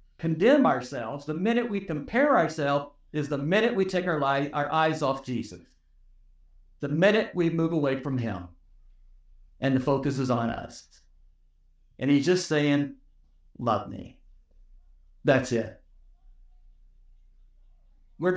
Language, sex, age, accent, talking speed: English, male, 50-69, American, 130 wpm